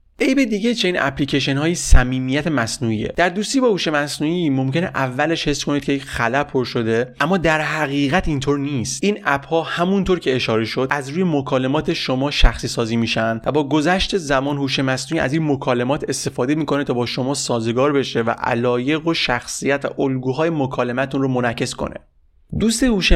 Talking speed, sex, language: 175 wpm, male, Persian